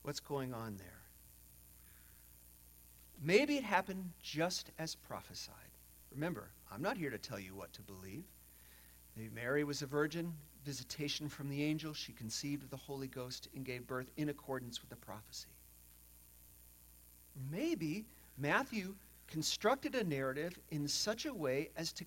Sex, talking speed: male, 145 wpm